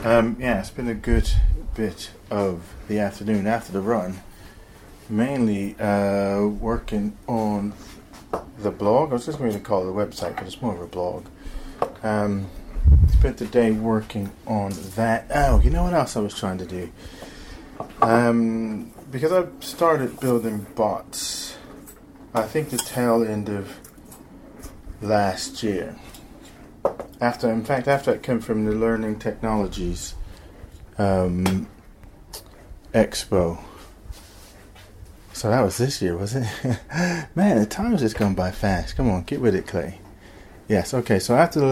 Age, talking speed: 30-49, 150 wpm